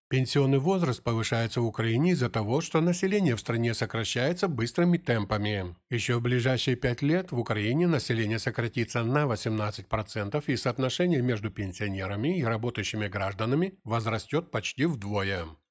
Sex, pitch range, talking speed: male, 110-140 Hz, 140 wpm